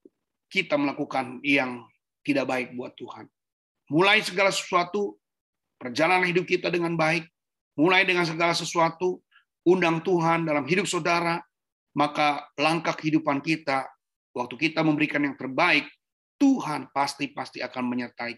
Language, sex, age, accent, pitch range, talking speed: Indonesian, male, 30-49, native, 130-165 Hz, 120 wpm